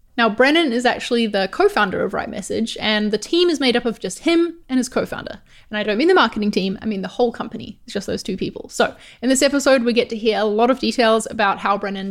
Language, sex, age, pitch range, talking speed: English, female, 20-39, 205-265 Hz, 265 wpm